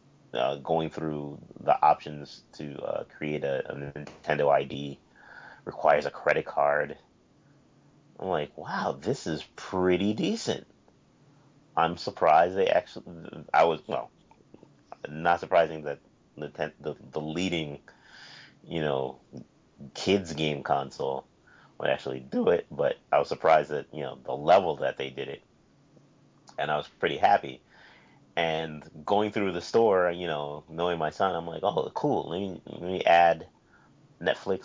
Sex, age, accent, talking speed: male, 30-49, American, 145 wpm